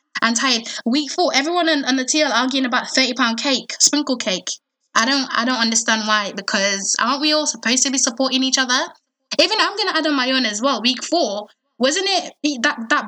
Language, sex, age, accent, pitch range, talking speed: English, female, 10-29, British, 215-275 Hz, 210 wpm